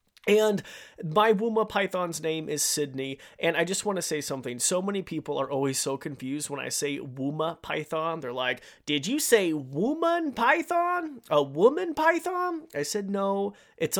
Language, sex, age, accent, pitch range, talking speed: English, male, 30-49, American, 140-185 Hz, 170 wpm